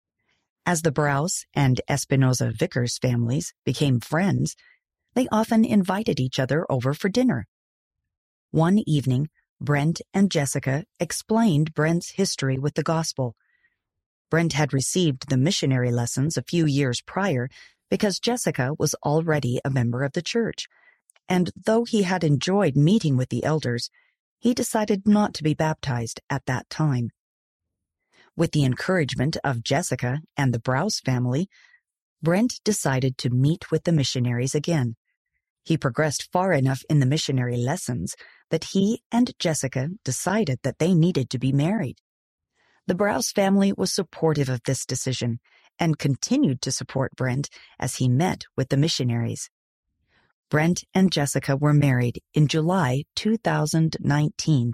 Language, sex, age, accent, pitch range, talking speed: English, female, 40-59, American, 130-175 Hz, 140 wpm